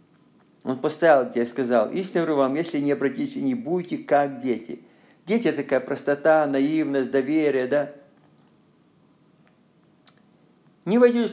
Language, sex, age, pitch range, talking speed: Russian, male, 50-69, 130-165 Hz, 125 wpm